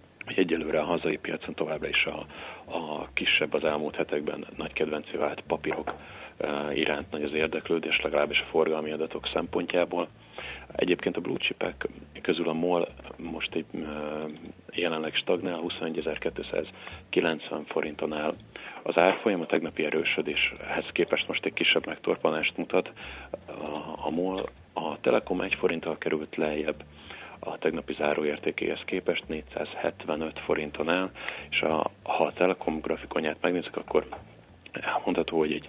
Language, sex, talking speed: Hungarian, male, 120 wpm